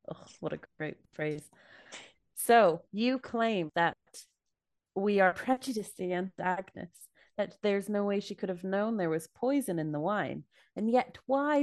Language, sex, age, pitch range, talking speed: English, female, 20-39, 175-225 Hz, 160 wpm